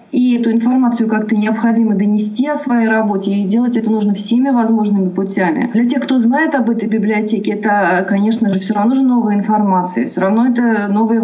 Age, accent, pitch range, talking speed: 30-49, native, 215-255 Hz, 185 wpm